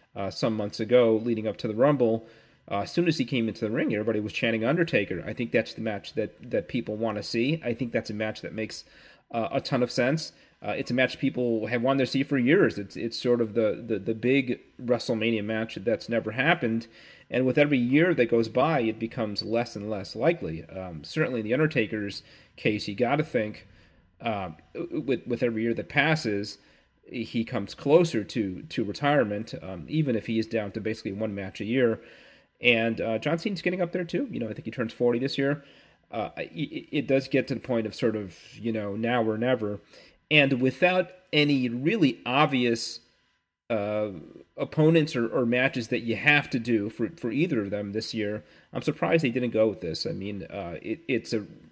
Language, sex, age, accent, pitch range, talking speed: English, male, 30-49, American, 110-135 Hz, 215 wpm